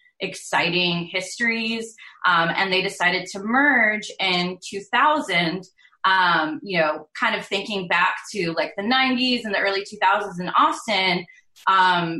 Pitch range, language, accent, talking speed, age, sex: 175-225 Hz, English, American, 140 wpm, 20-39, female